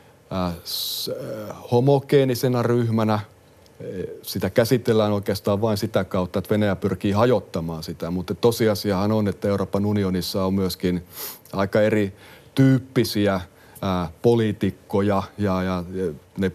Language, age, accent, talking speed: Finnish, 30-49, native, 100 wpm